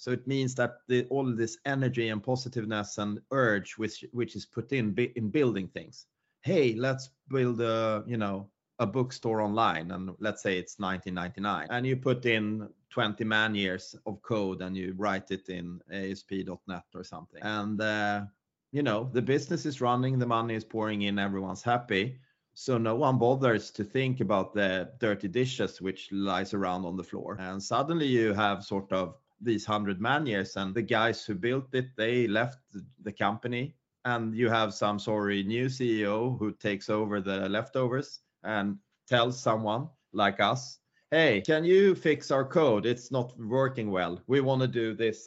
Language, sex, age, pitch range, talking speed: English, male, 30-49, 100-125 Hz, 180 wpm